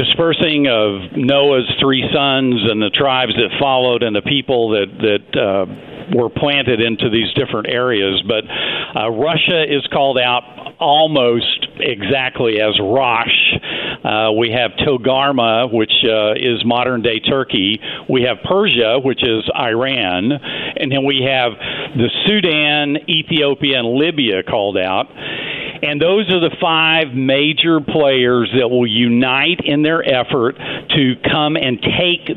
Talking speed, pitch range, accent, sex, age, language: 140 wpm, 120-155 Hz, American, male, 50-69, English